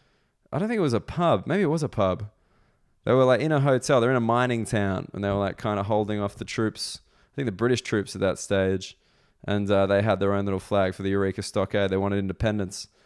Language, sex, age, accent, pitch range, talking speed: English, male, 20-39, Australian, 100-130 Hz, 255 wpm